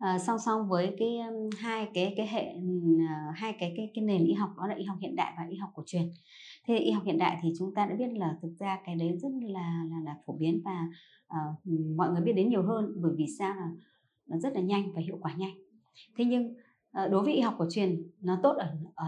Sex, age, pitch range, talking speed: male, 20-39, 170-220 Hz, 260 wpm